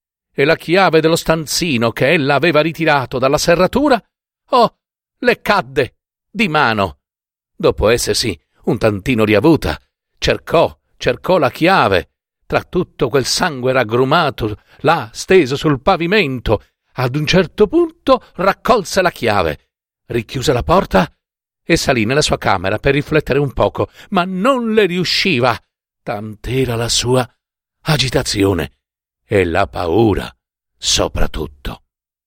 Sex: male